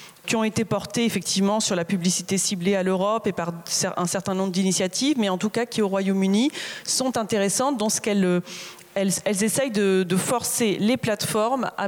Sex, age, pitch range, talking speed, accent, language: female, 30-49, 180-215 Hz, 195 wpm, French, French